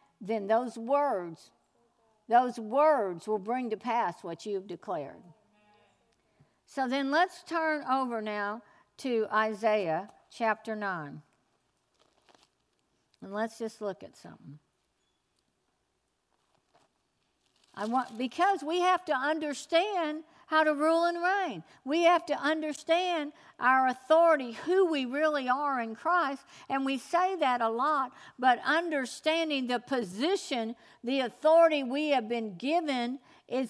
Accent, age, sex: American, 60-79, female